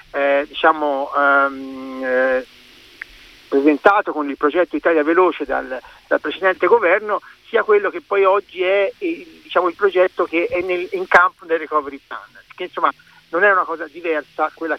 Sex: male